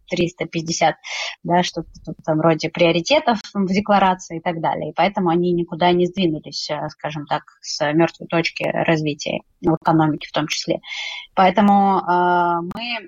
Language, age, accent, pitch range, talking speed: Russian, 20-39, native, 165-195 Hz, 140 wpm